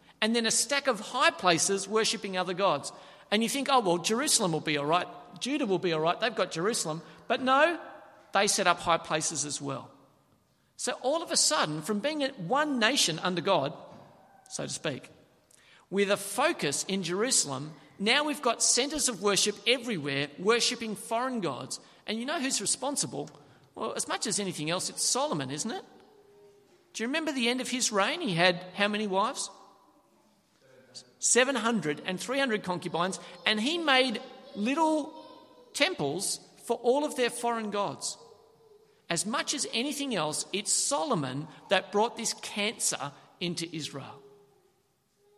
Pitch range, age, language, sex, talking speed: 180-270 Hz, 50-69, English, male, 160 wpm